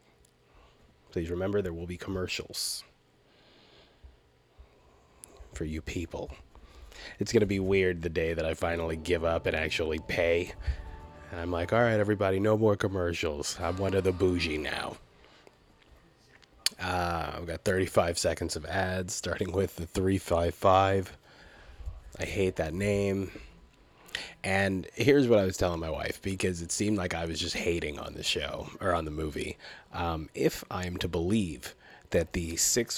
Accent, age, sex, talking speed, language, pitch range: American, 30-49, male, 155 wpm, English, 85-100 Hz